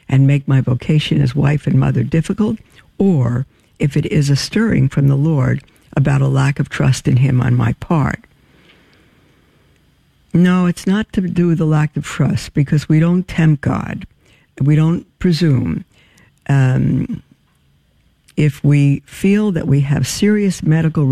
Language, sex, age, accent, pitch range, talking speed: English, female, 60-79, American, 135-160 Hz, 155 wpm